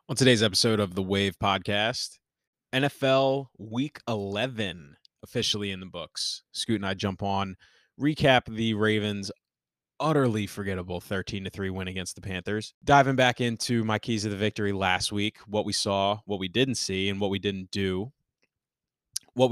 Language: English